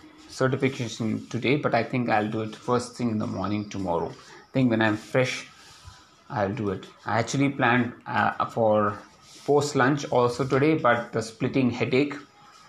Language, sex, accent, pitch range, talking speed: English, male, Indian, 110-130 Hz, 160 wpm